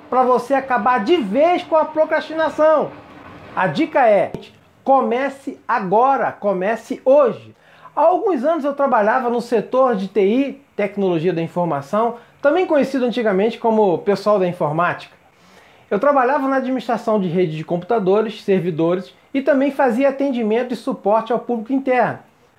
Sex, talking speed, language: male, 140 wpm, Portuguese